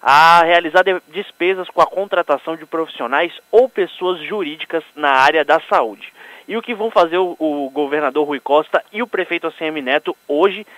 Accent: Brazilian